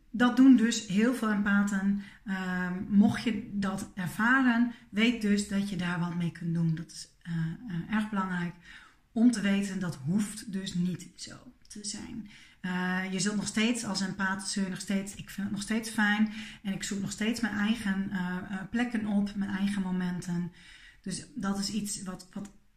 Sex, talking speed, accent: female, 180 wpm, Dutch